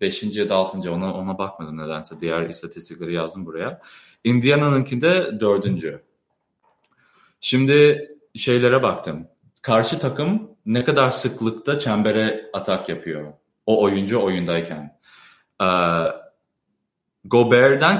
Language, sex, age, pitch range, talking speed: Turkish, male, 30-49, 100-145 Hz, 95 wpm